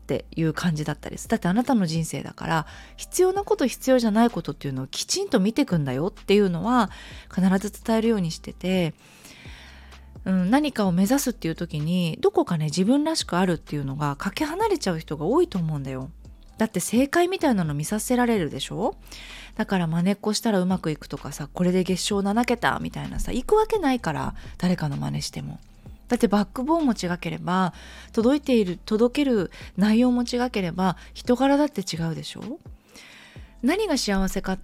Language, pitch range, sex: Japanese, 170-265 Hz, female